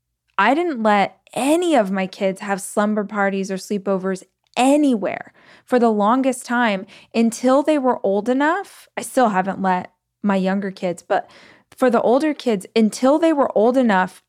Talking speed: 165 wpm